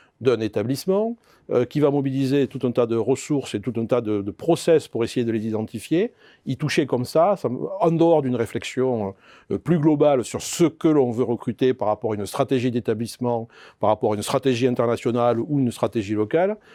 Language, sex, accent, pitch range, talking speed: French, male, French, 115-150 Hz, 205 wpm